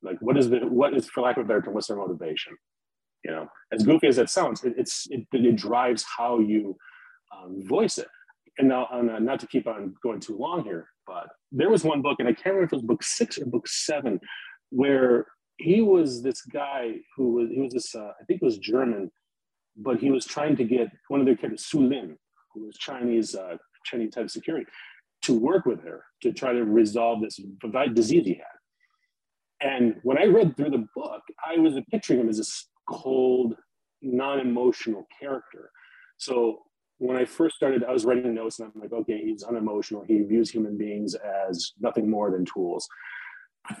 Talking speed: 205 wpm